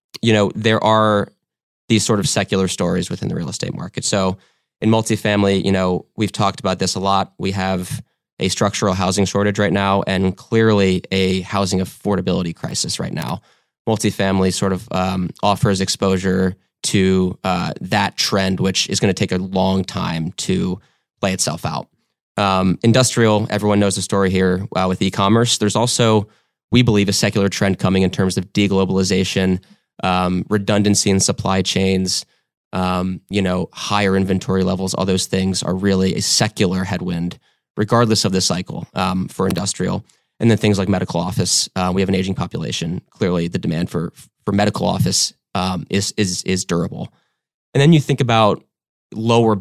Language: English